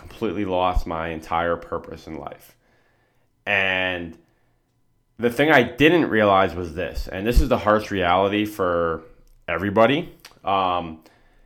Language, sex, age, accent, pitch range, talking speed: English, male, 30-49, American, 90-115 Hz, 120 wpm